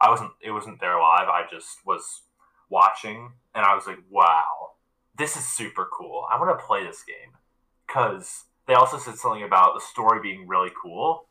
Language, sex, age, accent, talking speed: English, male, 20-39, American, 190 wpm